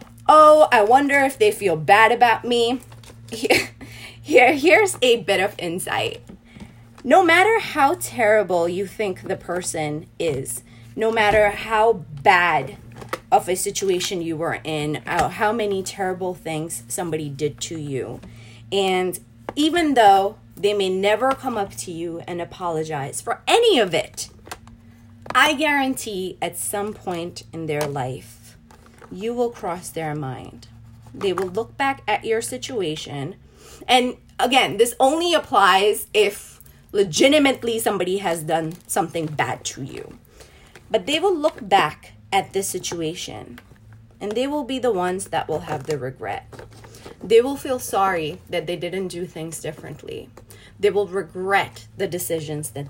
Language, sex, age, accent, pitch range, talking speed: English, female, 20-39, American, 130-220 Hz, 145 wpm